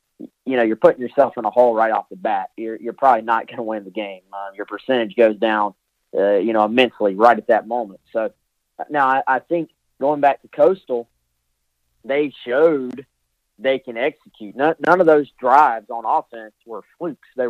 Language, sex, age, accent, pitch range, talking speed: English, male, 30-49, American, 110-140 Hz, 200 wpm